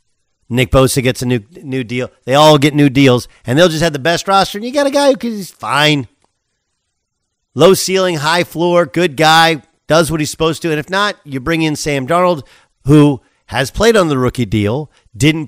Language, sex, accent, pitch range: English, male, American, 120-170 Hz